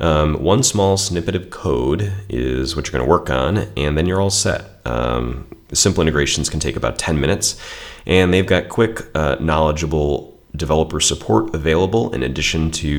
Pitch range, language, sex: 70-95 Hz, English, male